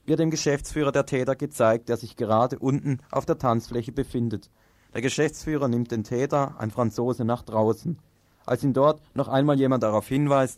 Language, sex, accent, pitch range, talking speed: German, male, German, 115-145 Hz, 175 wpm